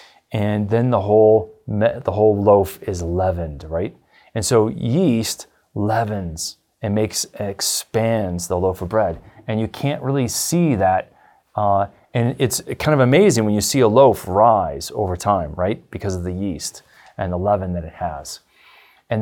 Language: English